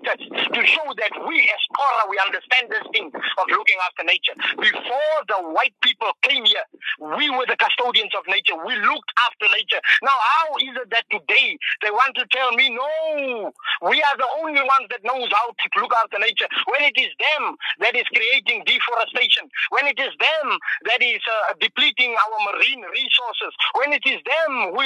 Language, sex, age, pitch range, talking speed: English, male, 50-69, 230-300 Hz, 190 wpm